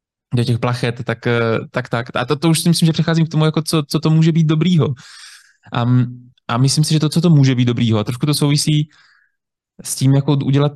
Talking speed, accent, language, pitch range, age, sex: 235 wpm, native, Czech, 115-145 Hz, 20-39, male